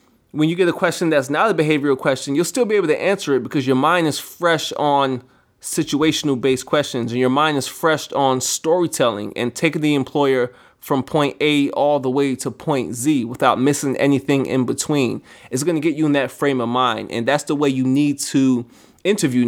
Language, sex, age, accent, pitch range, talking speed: English, male, 20-39, American, 125-145 Hz, 210 wpm